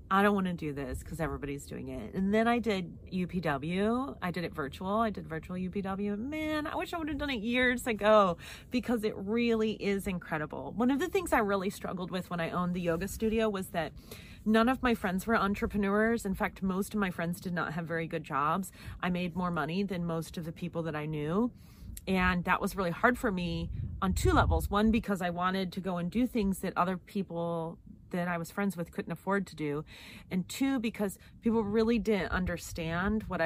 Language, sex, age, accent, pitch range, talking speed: English, female, 30-49, American, 165-215 Hz, 215 wpm